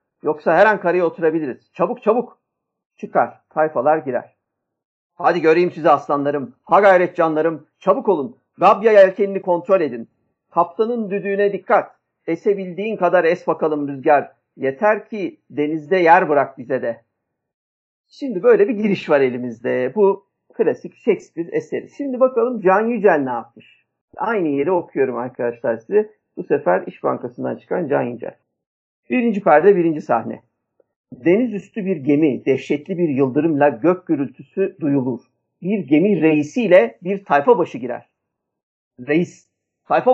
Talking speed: 135 wpm